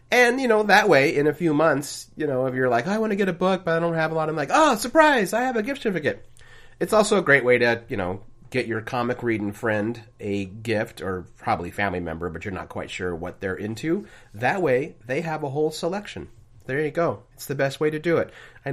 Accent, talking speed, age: American, 260 wpm, 30-49